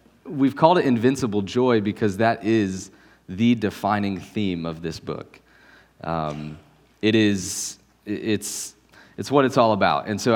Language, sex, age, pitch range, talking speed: English, male, 20-39, 90-115 Hz, 145 wpm